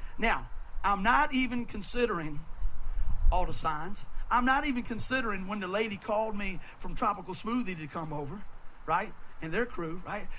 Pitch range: 155-230 Hz